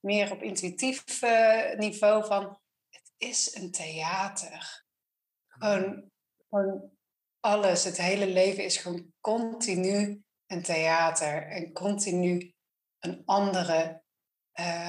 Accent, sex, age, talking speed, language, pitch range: Dutch, female, 30-49, 105 wpm, Dutch, 175-210 Hz